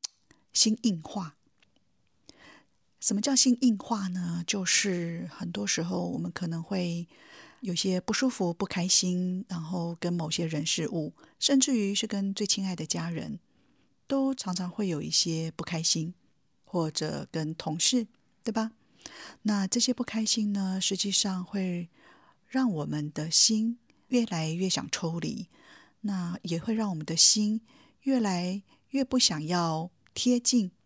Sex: female